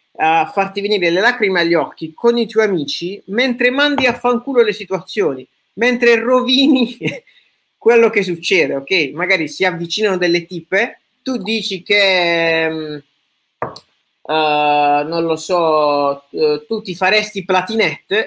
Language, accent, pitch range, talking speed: Italian, native, 160-225 Hz, 135 wpm